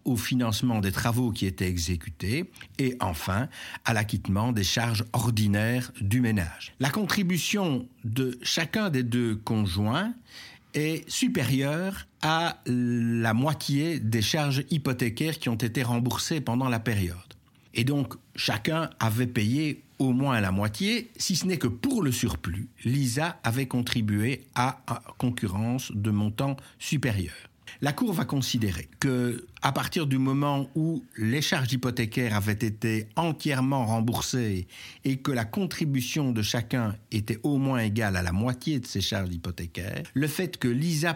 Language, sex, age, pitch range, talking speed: French, male, 60-79, 110-140 Hz, 145 wpm